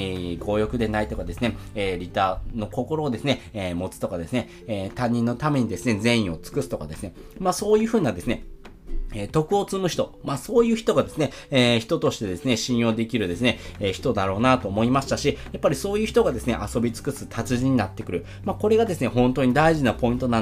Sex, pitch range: male, 105-145 Hz